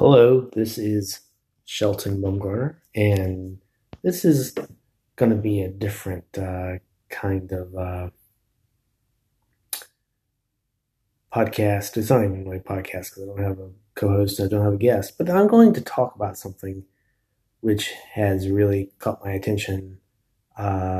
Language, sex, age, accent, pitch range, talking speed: English, male, 30-49, American, 95-115 Hz, 135 wpm